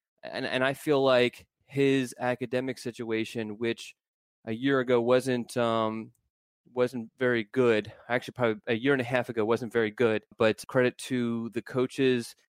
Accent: American